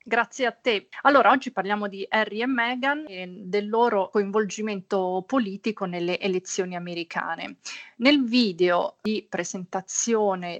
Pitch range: 180-220 Hz